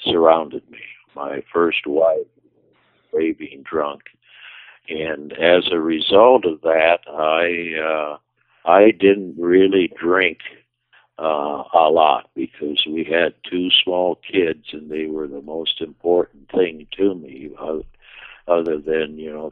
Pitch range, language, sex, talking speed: 75-95 Hz, English, male, 130 wpm